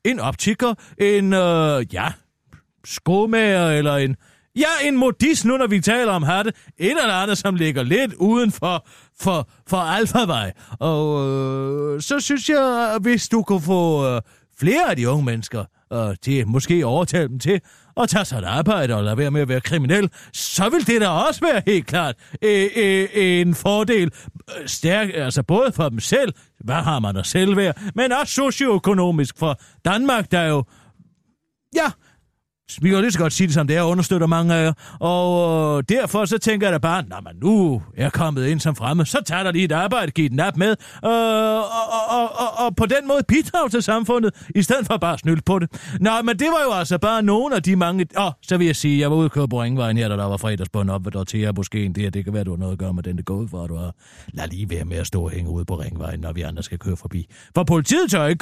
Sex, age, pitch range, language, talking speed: male, 40-59, 135-205 Hz, Danish, 230 wpm